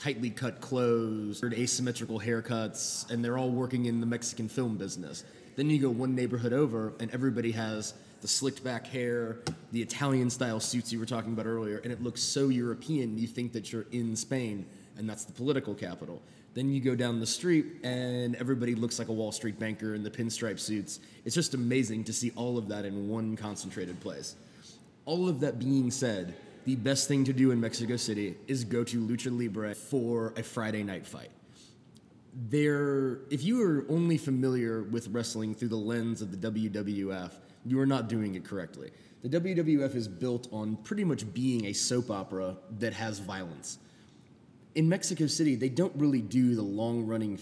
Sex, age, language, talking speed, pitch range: male, 20-39, English, 185 wpm, 110-130 Hz